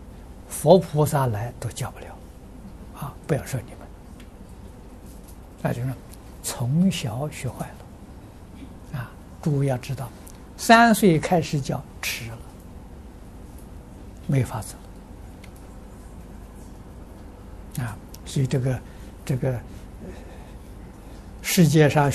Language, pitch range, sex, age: Chinese, 95-150 Hz, male, 60-79